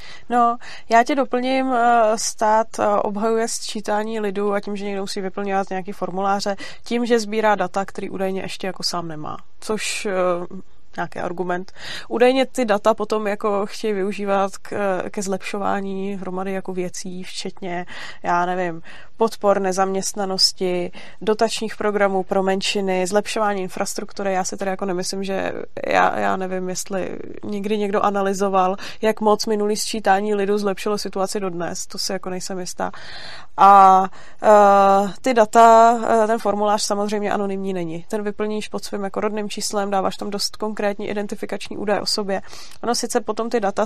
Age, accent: 20-39, native